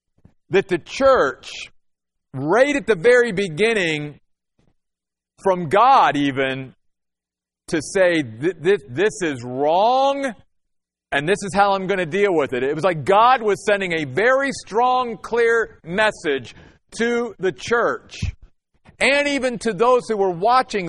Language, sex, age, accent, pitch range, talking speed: English, male, 50-69, American, 160-220 Hz, 140 wpm